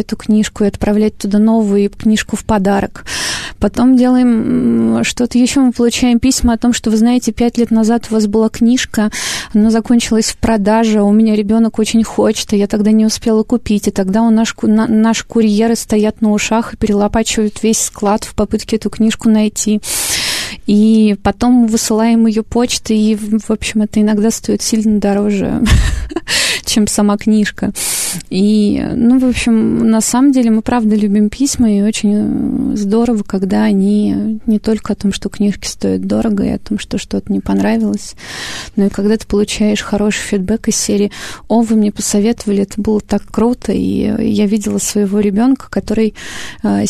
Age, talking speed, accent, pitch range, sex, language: 20-39, 170 wpm, native, 210-230 Hz, female, Russian